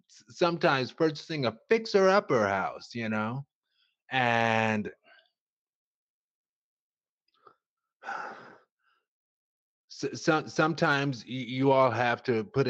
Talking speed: 80 wpm